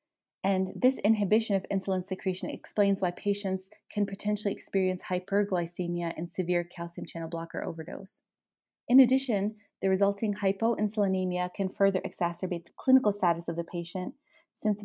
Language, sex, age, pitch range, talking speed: English, female, 20-39, 180-210 Hz, 135 wpm